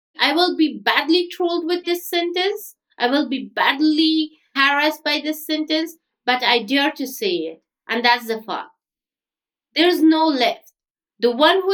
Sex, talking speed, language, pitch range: female, 170 wpm, English, 230-315 Hz